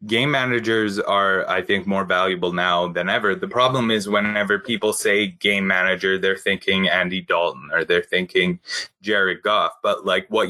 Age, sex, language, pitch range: 20-39, male, English, 95-125 Hz